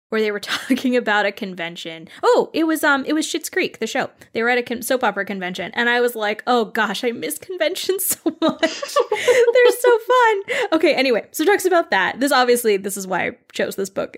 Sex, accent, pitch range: female, American, 215-285 Hz